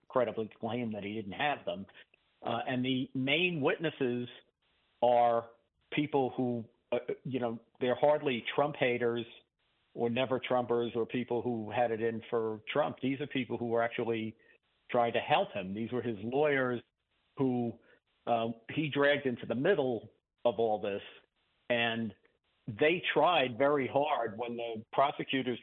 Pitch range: 115-130 Hz